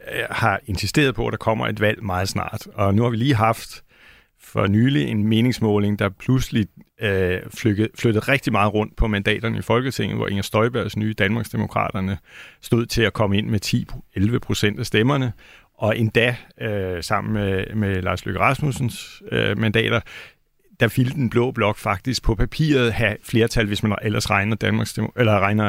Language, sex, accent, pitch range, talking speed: Danish, male, native, 100-115 Hz, 170 wpm